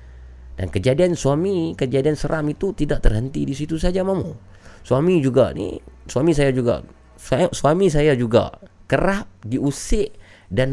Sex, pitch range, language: male, 90-145 Hz, Malay